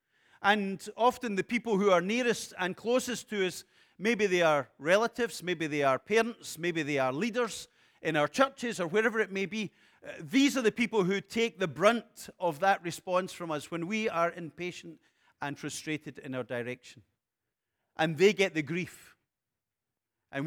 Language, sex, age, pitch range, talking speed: English, male, 40-59, 150-210 Hz, 175 wpm